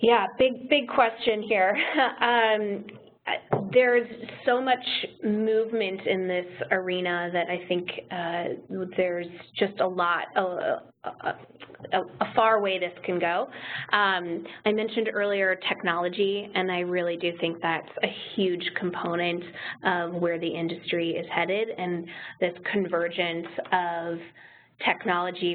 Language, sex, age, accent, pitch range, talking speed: English, female, 20-39, American, 175-205 Hz, 125 wpm